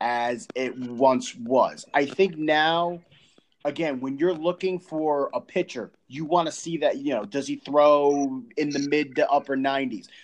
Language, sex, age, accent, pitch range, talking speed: English, male, 30-49, American, 135-175 Hz, 175 wpm